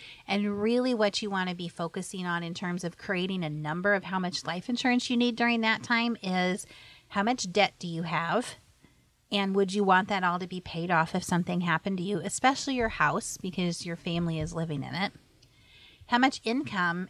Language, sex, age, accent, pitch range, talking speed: English, female, 30-49, American, 170-205 Hz, 210 wpm